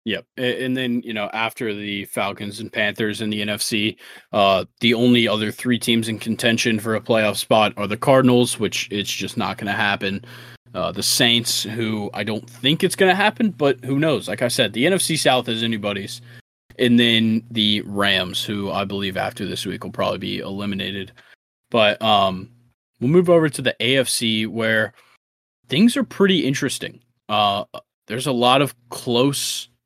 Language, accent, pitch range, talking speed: English, American, 105-125 Hz, 180 wpm